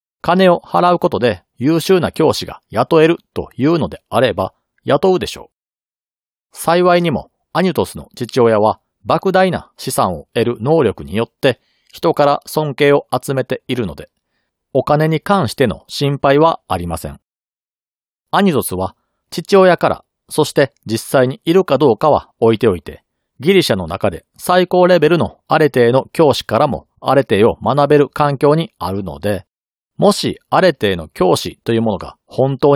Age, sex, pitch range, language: 40-59, male, 110-165 Hz, Japanese